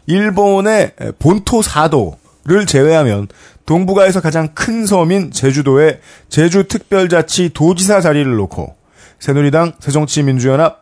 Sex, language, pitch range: male, Korean, 120-175 Hz